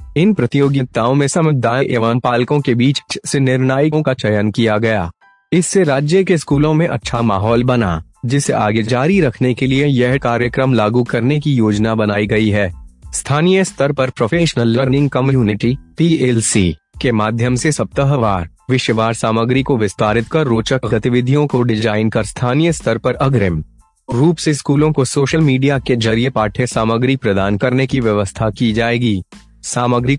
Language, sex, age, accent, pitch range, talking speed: Hindi, male, 30-49, native, 110-140 Hz, 155 wpm